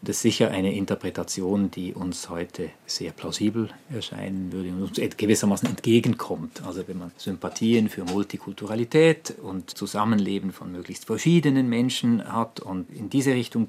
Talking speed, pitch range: 145 wpm, 100-135 Hz